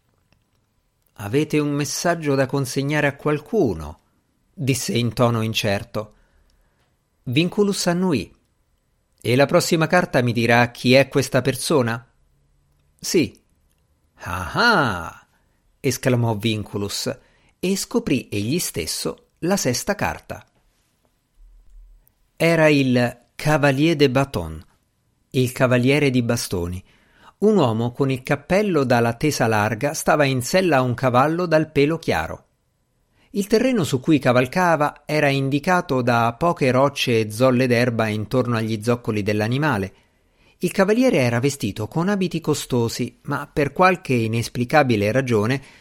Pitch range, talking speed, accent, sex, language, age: 115-155 Hz, 115 wpm, native, male, Italian, 50-69